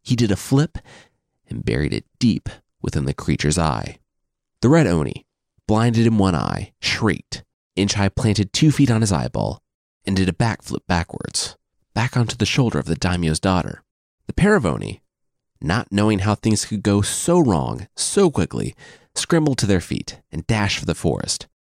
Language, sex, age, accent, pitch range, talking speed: English, male, 30-49, American, 85-115 Hz, 175 wpm